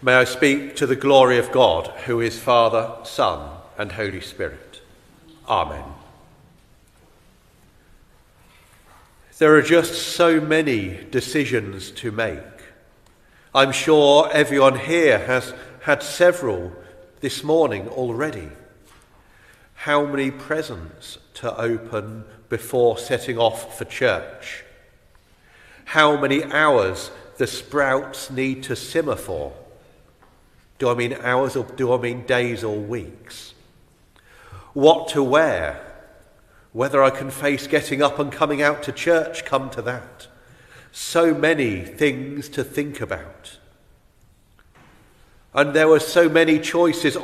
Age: 50-69